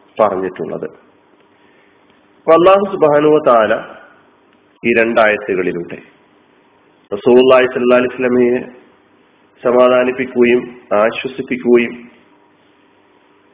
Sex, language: male, Malayalam